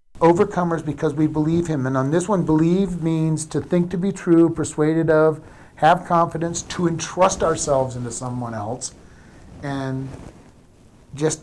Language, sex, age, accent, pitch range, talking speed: English, male, 50-69, American, 140-175 Hz, 145 wpm